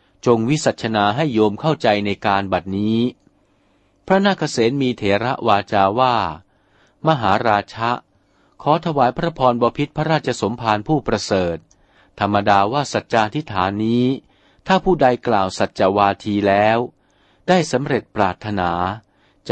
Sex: male